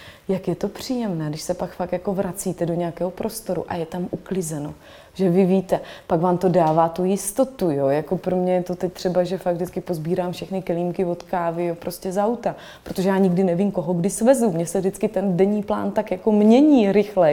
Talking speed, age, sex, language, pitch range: 220 wpm, 20-39, female, Slovak, 170-200 Hz